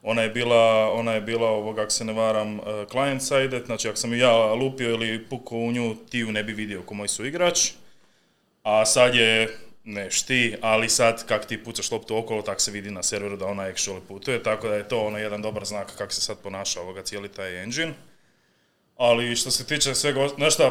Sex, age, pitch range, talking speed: male, 30-49, 110-130 Hz, 205 wpm